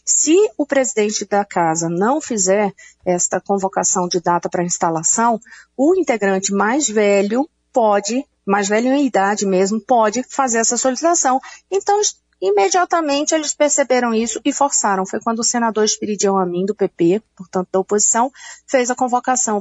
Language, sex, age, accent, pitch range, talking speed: Portuguese, female, 40-59, Brazilian, 195-255 Hz, 145 wpm